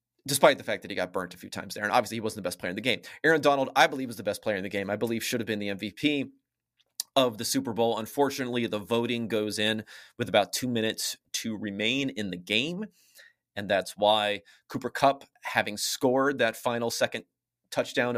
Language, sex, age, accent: English, male, 30-49, American